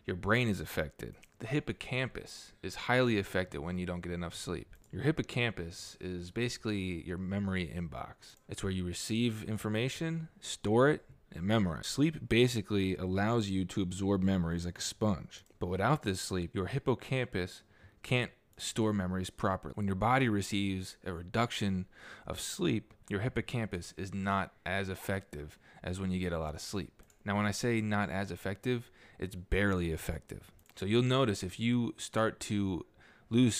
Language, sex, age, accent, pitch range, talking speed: English, male, 20-39, American, 95-120 Hz, 165 wpm